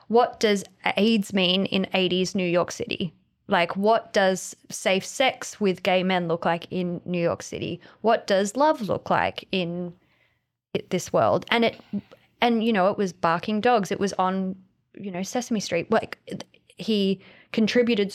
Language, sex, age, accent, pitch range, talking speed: English, female, 20-39, Australian, 180-215 Hz, 165 wpm